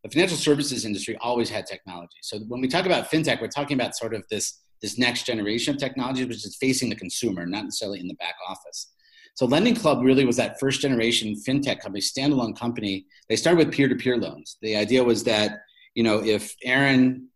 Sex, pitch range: male, 105-135 Hz